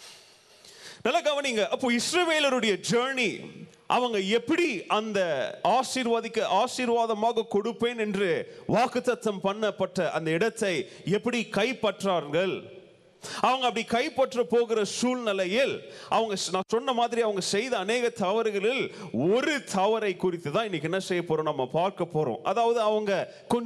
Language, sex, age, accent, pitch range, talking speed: Tamil, male, 30-49, native, 180-235 Hz, 70 wpm